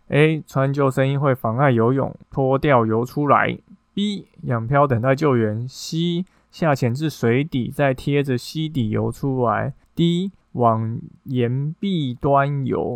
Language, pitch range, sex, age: Chinese, 120-150 Hz, male, 20-39